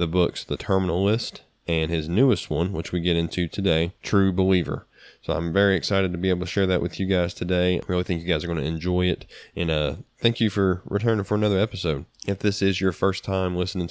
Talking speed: 240 wpm